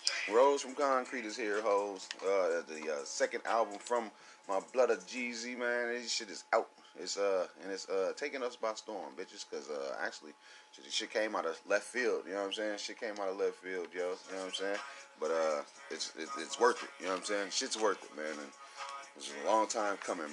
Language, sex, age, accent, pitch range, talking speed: English, male, 30-49, American, 100-160 Hz, 240 wpm